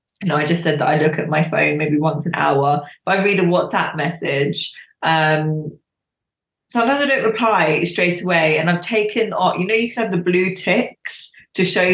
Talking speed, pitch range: 210 wpm, 155-185 Hz